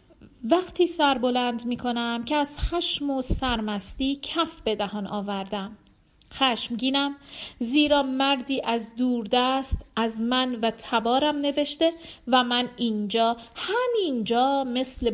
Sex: female